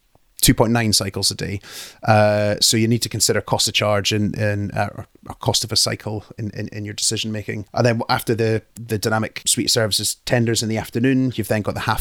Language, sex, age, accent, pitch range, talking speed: English, male, 30-49, British, 105-115 Hz, 230 wpm